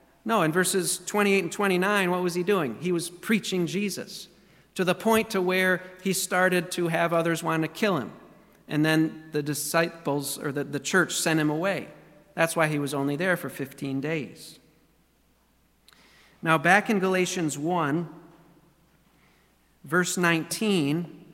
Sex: male